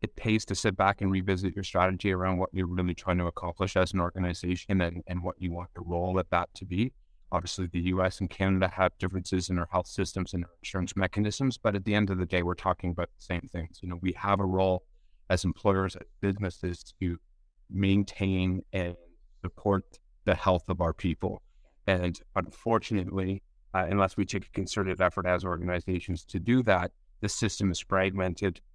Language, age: English, 30-49